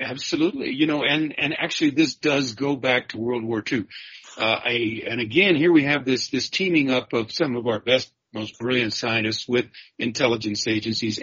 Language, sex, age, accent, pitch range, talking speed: English, male, 50-69, American, 110-135 Hz, 190 wpm